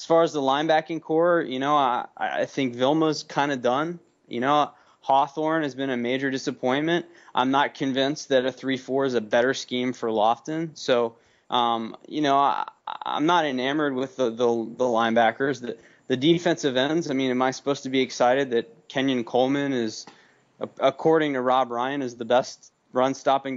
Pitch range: 120-145 Hz